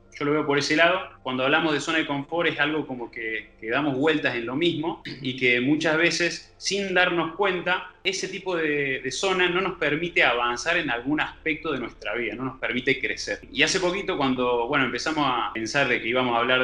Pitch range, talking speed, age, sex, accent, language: 130-170 Hz, 220 wpm, 20-39, male, Argentinian, Spanish